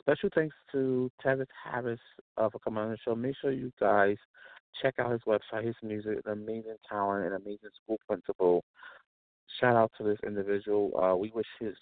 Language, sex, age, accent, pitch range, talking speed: English, male, 30-49, American, 100-125 Hz, 195 wpm